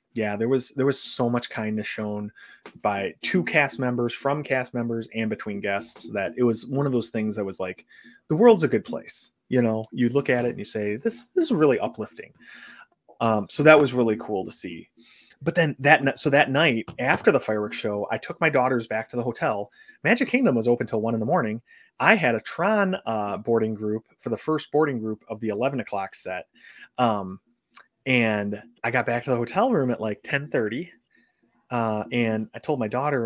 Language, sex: English, male